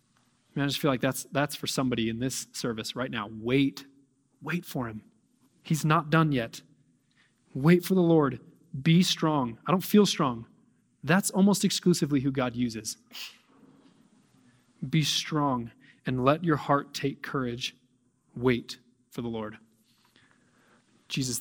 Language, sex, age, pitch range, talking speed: English, male, 20-39, 125-155 Hz, 140 wpm